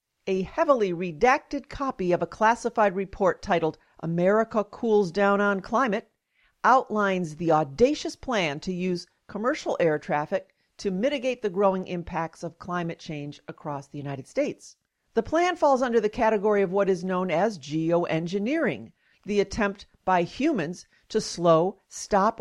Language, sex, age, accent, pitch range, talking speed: English, female, 50-69, American, 170-225 Hz, 145 wpm